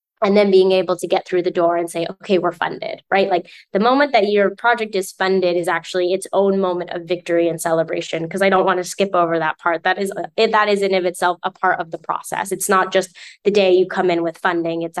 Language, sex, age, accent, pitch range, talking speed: English, female, 10-29, American, 170-190 Hz, 265 wpm